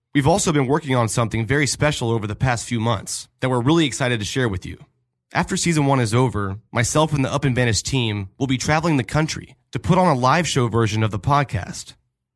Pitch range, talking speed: 120-145 Hz, 235 wpm